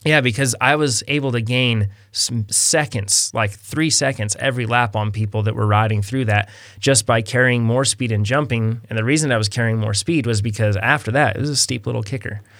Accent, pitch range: American, 110-135 Hz